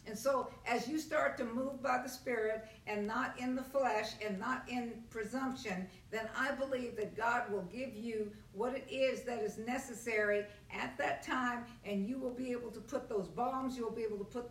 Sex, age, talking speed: female, 50-69, 210 wpm